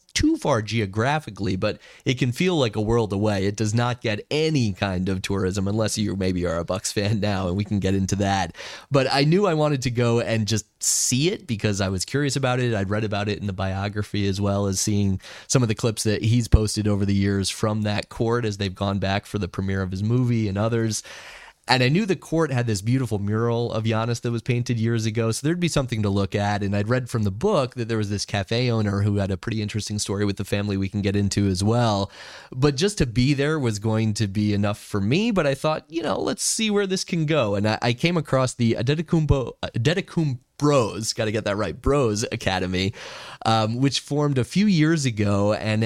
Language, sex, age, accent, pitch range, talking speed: English, male, 30-49, American, 100-130 Hz, 240 wpm